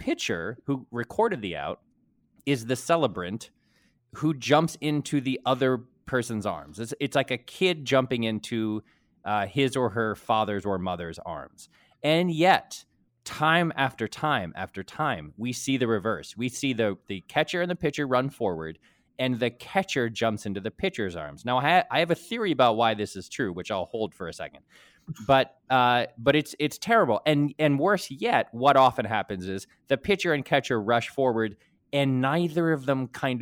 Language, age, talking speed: English, 20-39, 180 wpm